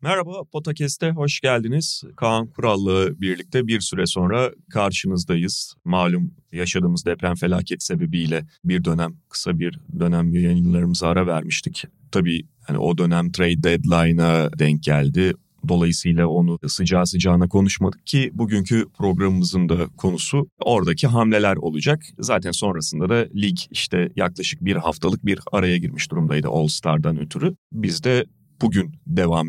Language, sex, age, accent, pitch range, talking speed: Turkish, male, 30-49, native, 85-130 Hz, 130 wpm